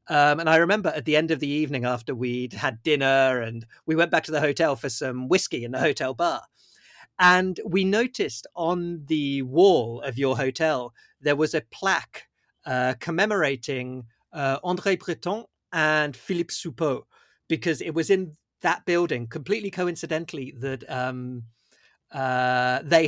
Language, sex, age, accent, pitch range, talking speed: English, male, 40-59, British, 130-170 Hz, 160 wpm